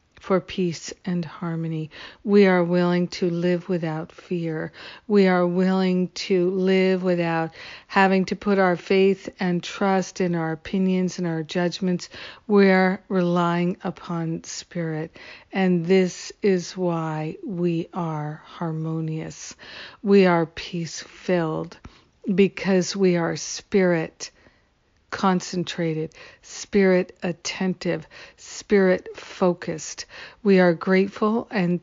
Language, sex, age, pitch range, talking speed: English, female, 50-69, 175-195 Hz, 110 wpm